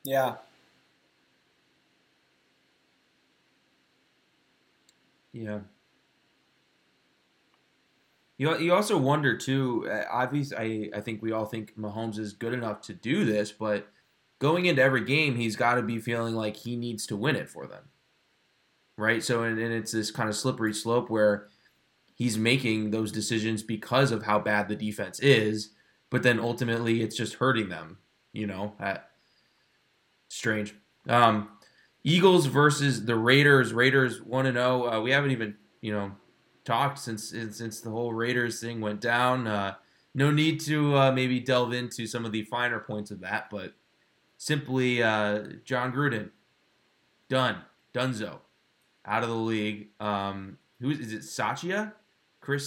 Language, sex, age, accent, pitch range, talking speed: English, male, 20-39, American, 105-130 Hz, 145 wpm